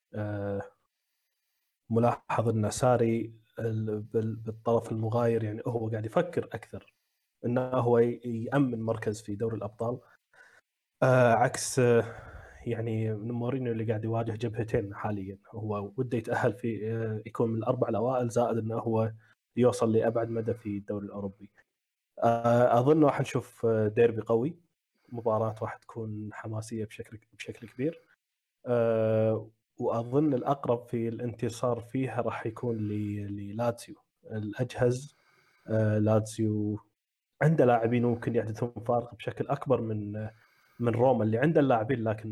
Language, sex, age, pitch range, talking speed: Arabic, male, 20-39, 110-120 Hz, 110 wpm